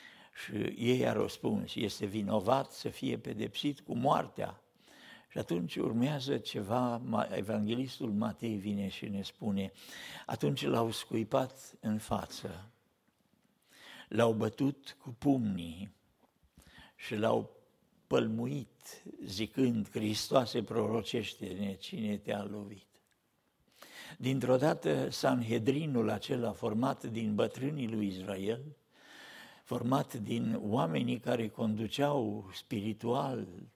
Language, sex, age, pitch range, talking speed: Romanian, male, 60-79, 105-135 Hz, 95 wpm